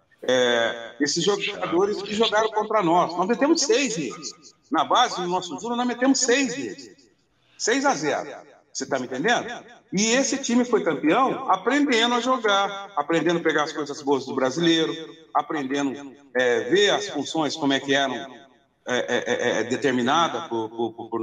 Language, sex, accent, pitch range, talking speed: Portuguese, male, Brazilian, 150-245 Hz, 170 wpm